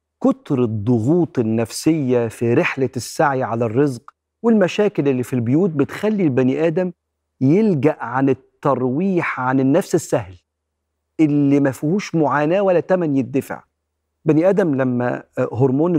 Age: 40-59